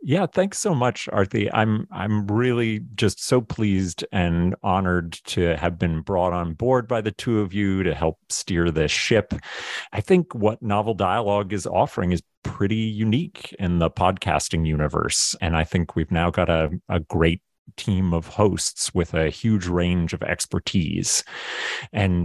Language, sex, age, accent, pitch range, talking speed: English, male, 40-59, American, 85-110 Hz, 165 wpm